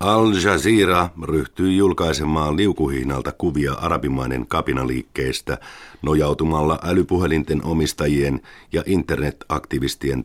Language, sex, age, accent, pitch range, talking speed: Finnish, male, 50-69, native, 75-90 Hz, 70 wpm